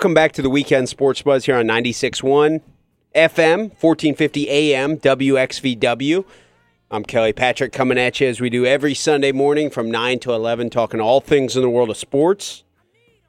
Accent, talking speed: American, 165 wpm